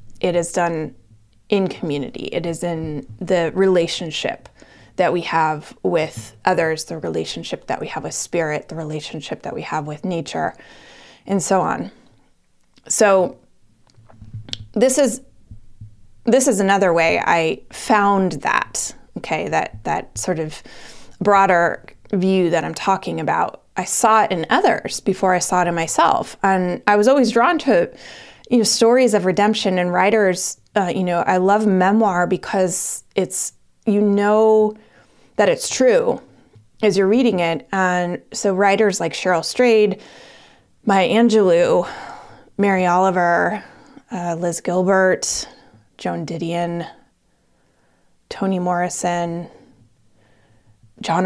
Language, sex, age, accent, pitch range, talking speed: English, female, 20-39, American, 160-205 Hz, 130 wpm